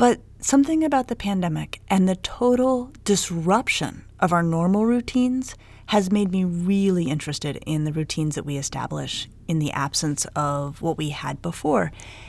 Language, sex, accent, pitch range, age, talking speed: English, female, American, 150-215 Hz, 30-49, 155 wpm